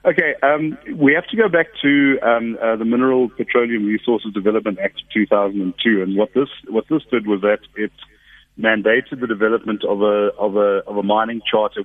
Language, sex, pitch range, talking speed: English, male, 95-120 Hz, 195 wpm